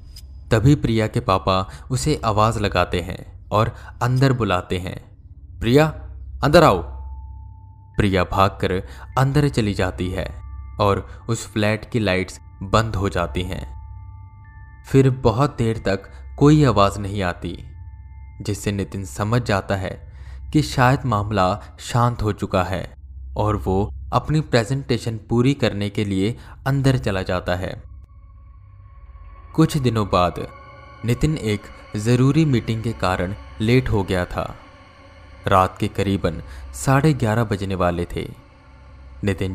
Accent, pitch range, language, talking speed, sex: native, 90-115 Hz, Hindi, 125 wpm, male